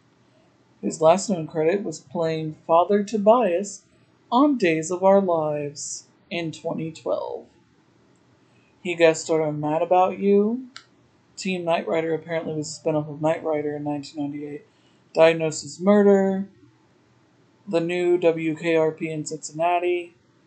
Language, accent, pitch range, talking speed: English, American, 155-190 Hz, 120 wpm